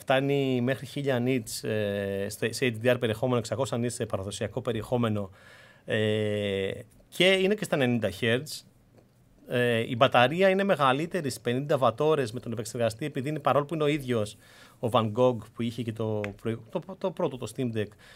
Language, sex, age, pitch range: Greek, male, 30-49, 115-145 Hz